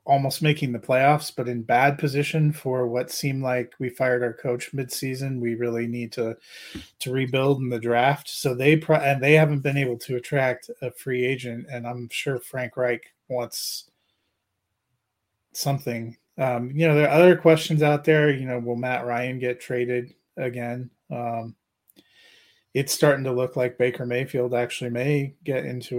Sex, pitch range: male, 120-145 Hz